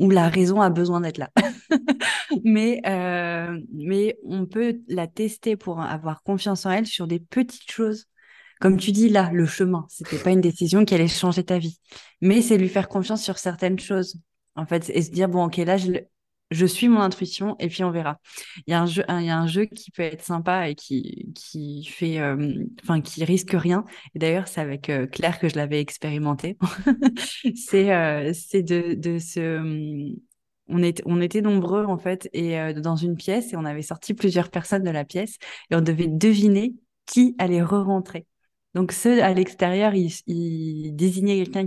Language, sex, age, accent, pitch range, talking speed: French, female, 20-39, French, 165-200 Hz, 200 wpm